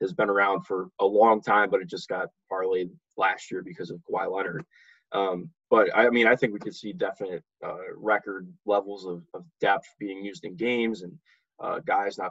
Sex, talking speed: male, 205 wpm